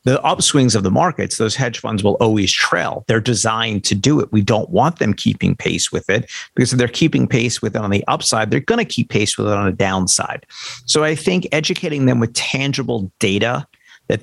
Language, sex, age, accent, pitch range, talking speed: English, male, 50-69, American, 105-135 Hz, 225 wpm